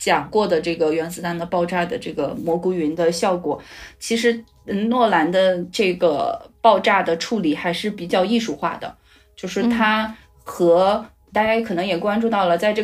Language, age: Chinese, 20-39